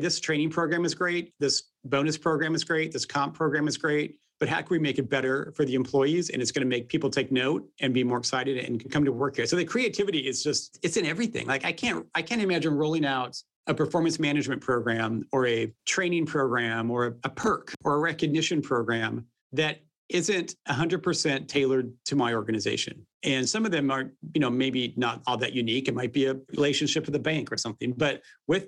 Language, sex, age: English, male, 40-59